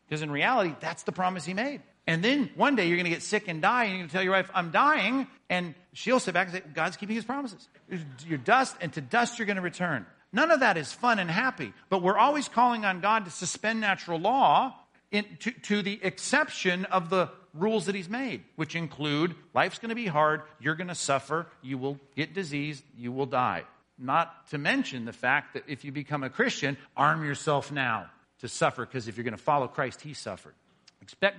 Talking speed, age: 225 wpm, 50-69